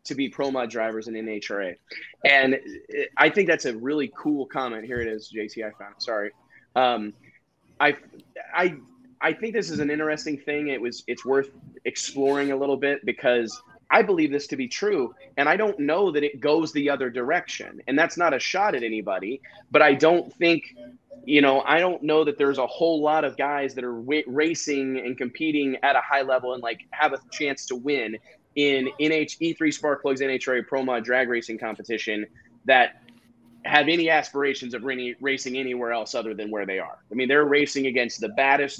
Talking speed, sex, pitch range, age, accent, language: 200 wpm, male, 125-155 Hz, 20-39, American, English